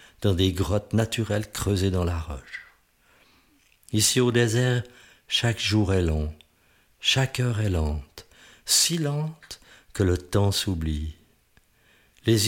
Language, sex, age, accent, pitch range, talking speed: French, male, 60-79, French, 90-130 Hz, 125 wpm